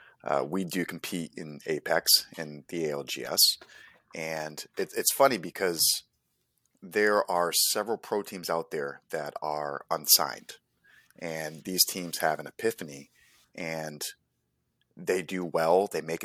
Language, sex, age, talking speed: English, male, 30-49, 135 wpm